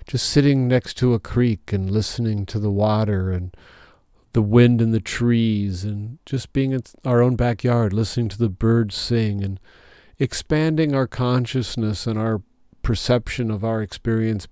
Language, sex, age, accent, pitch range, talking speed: English, male, 40-59, American, 105-125 Hz, 160 wpm